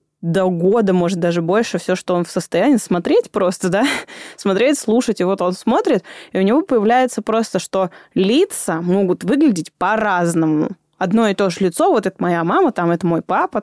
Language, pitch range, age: Russian, 185-245 Hz, 20-39